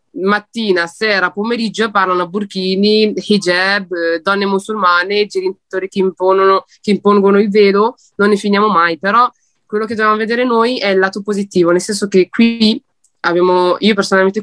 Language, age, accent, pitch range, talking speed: Italian, 20-39, native, 180-215 Hz, 155 wpm